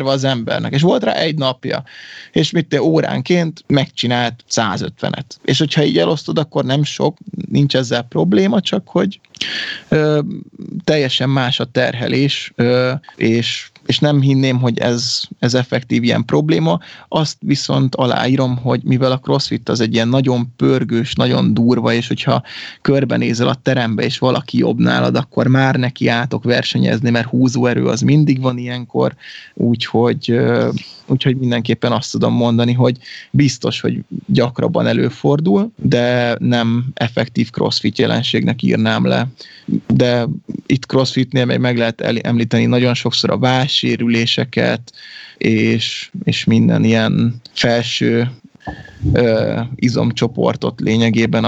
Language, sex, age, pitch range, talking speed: Hungarian, male, 20-39, 115-140 Hz, 125 wpm